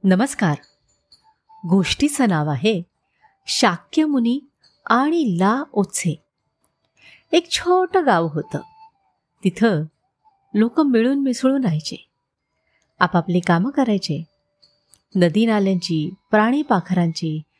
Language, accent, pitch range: Marathi, native, 180-275 Hz